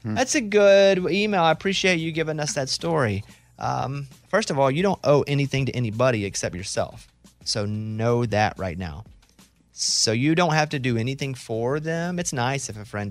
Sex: male